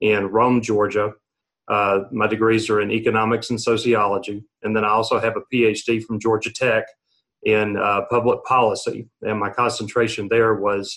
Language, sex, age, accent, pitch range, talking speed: English, male, 40-59, American, 105-120 Hz, 165 wpm